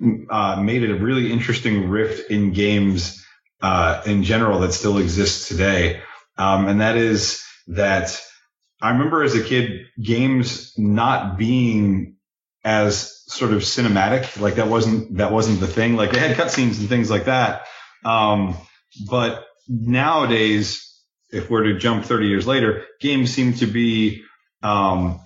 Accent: American